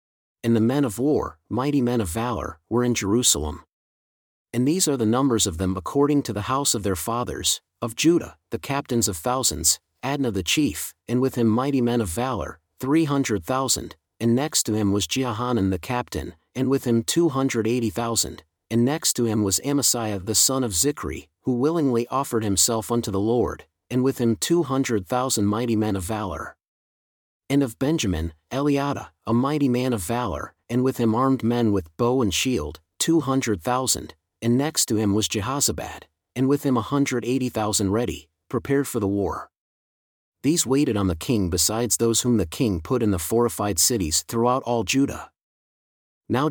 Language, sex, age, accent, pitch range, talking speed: English, male, 40-59, American, 100-130 Hz, 185 wpm